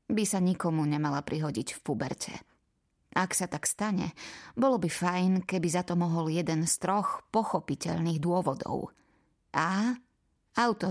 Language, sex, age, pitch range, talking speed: Slovak, female, 20-39, 175-210 Hz, 140 wpm